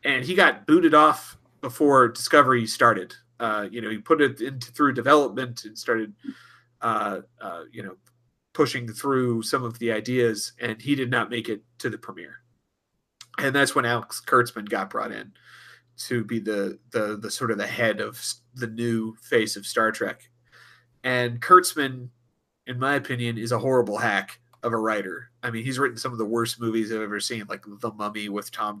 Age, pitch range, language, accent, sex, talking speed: 30-49, 110-125 Hz, English, American, male, 190 wpm